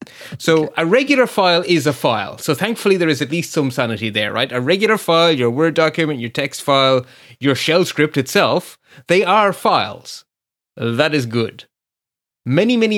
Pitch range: 120-170 Hz